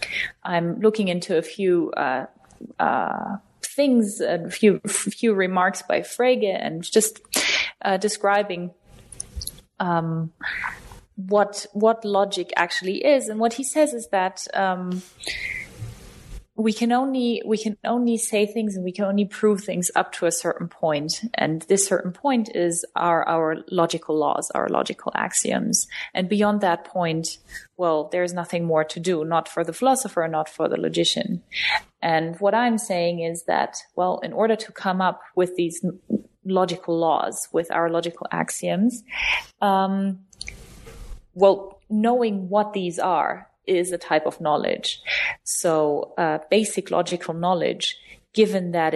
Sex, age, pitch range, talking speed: female, 20-39, 170-210 Hz, 145 wpm